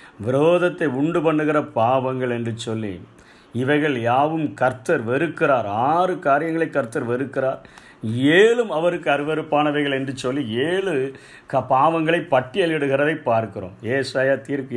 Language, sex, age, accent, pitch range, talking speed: Tamil, male, 50-69, native, 135-160 Hz, 105 wpm